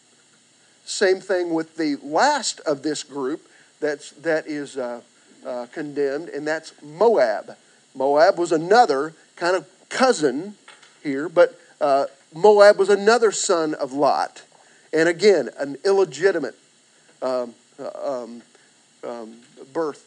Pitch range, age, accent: 140-200 Hz, 50-69, American